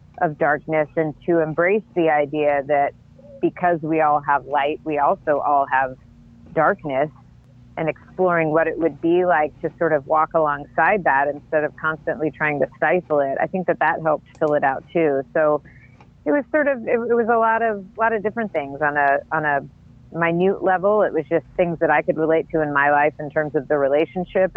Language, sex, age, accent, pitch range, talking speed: English, female, 40-59, American, 145-180 Hz, 210 wpm